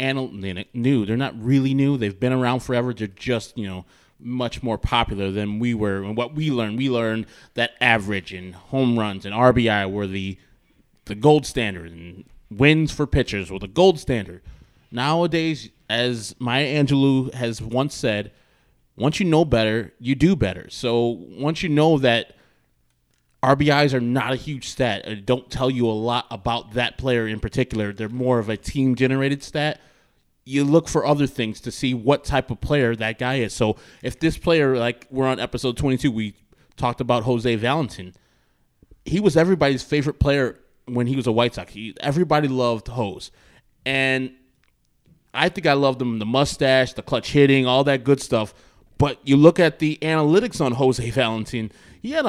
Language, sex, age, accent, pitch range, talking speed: English, male, 20-39, American, 110-140 Hz, 180 wpm